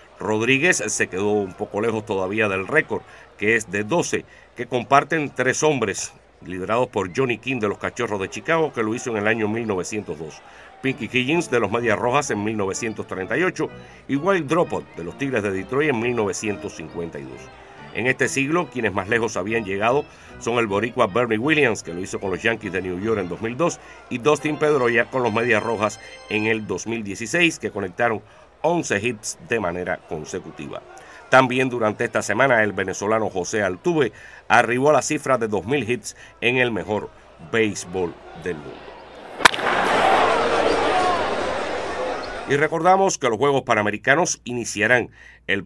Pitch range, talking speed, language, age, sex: 105-130 Hz, 160 wpm, Spanish, 60-79, male